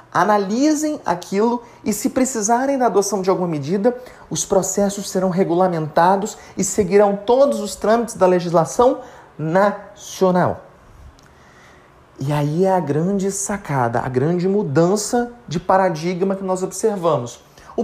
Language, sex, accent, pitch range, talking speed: Portuguese, male, Brazilian, 130-205 Hz, 125 wpm